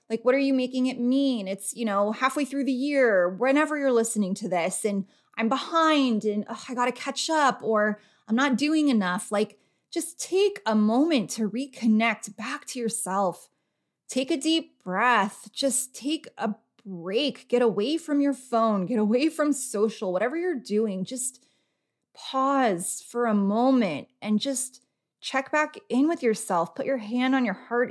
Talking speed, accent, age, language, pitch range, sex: 175 wpm, American, 20-39, English, 205-260 Hz, female